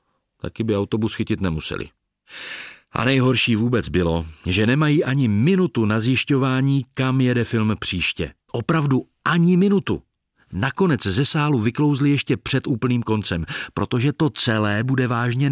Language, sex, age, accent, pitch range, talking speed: Czech, male, 40-59, native, 110-150 Hz, 135 wpm